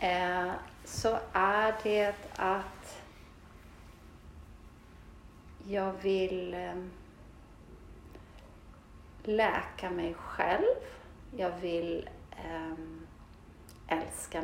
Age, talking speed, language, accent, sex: 30-49, 50 wpm, Swedish, native, female